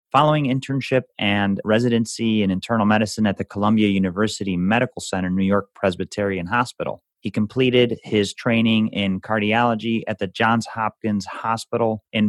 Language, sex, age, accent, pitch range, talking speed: English, male, 30-49, American, 100-115 Hz, 140 wpm